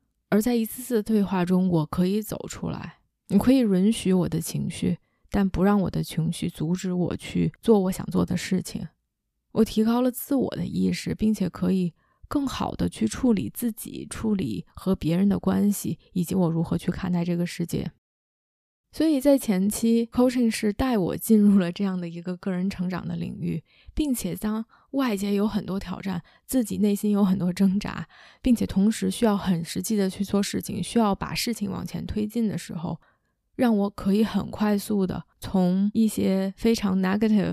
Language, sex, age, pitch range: Chinese, female, 20-39, 180-220 Hz